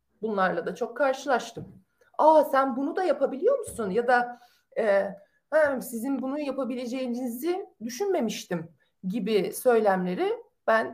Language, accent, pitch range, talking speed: Turkish, native, 190-275 Hz, 115 wpm